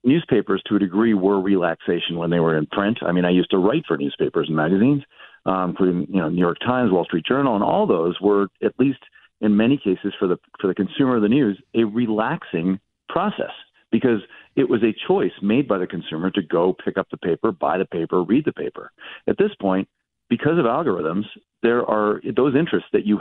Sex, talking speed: male, 215 wpm